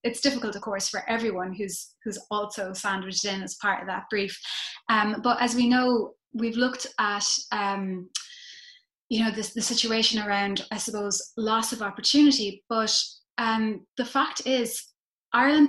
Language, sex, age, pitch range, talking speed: English, female, 20-39, 215-260 Hz, 160 wpm